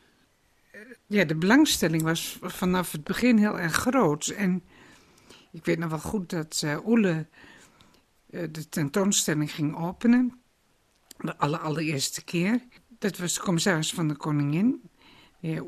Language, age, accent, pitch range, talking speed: Dutch, 60-79, Dutch, 160-220 Hz, 140 wpm